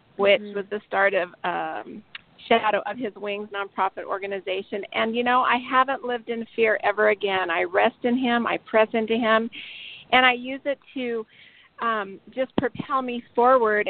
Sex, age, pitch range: female, 40-59, 195-230 Hz